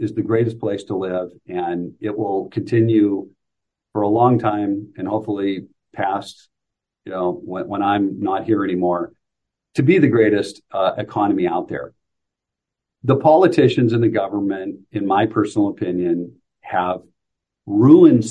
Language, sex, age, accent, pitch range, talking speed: English, male, 50-69, American, 95-130 Hz, 145 wpm